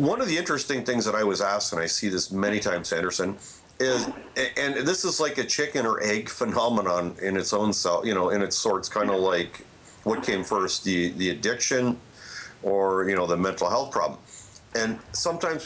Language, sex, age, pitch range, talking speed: English, male, 50-69, 100-125 Hz, 205 wpm